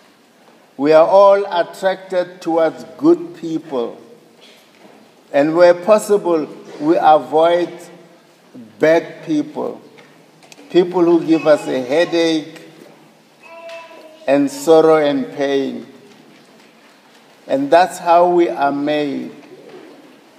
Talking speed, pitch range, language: 90 wpm, 155-185 Hz, English